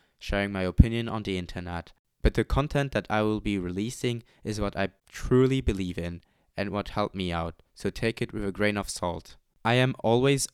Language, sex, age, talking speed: English, male, 20-39, 205 wpm